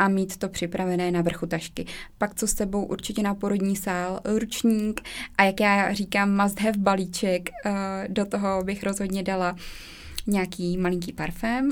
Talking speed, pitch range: 160 wpm, 185-220 Hz